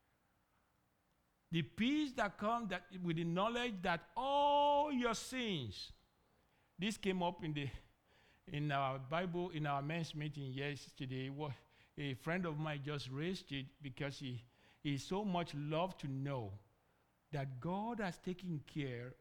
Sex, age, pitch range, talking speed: male, 60-79, 130-195 Hz, 135 wpm